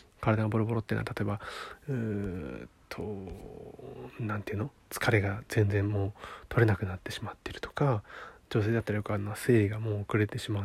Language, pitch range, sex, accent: Japanese, 105-130 Hz, male, native